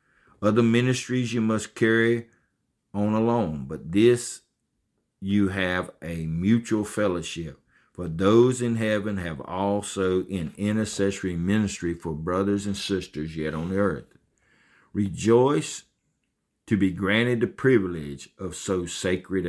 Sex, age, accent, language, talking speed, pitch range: male, 50-69, American, English, 120 wpm, 85-110 Hz